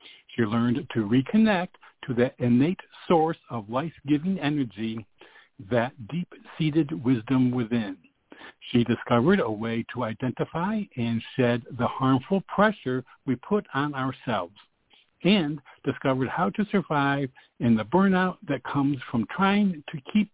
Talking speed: 130 wpm